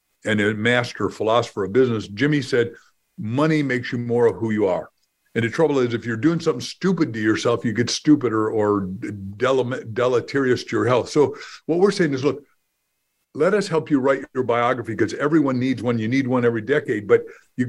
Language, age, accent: English, 50-69, American